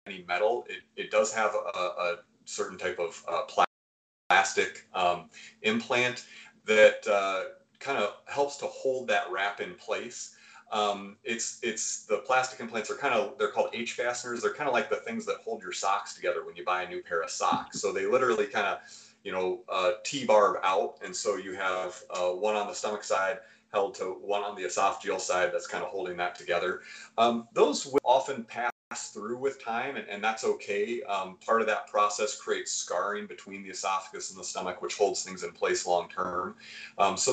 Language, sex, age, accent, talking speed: English, male, 30-49, American, 205 wpm